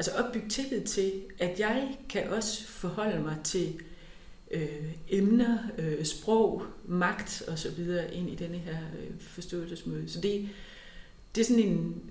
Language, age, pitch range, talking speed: Danish, 30-49, 165-210 Hz, 140 wpm